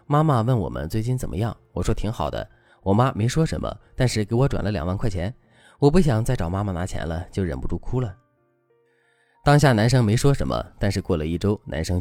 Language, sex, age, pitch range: Chinese, male, 20-39, 90-130 Hz